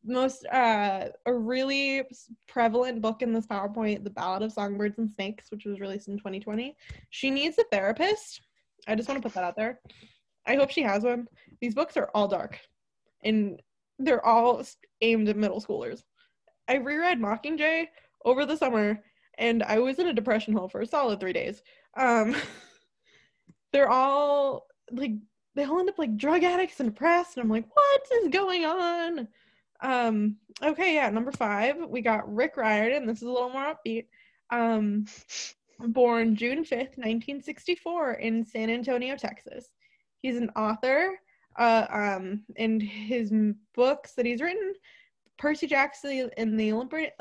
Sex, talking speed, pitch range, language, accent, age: female, 160 wpm, 215-280 Hz, English, American, 20-39